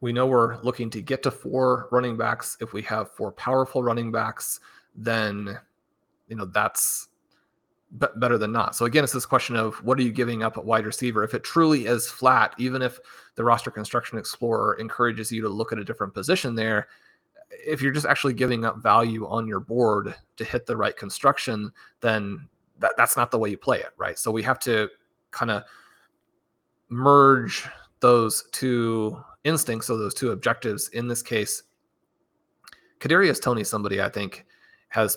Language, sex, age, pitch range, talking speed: English, male, 30-49, 110-125 Hz, 185 wpm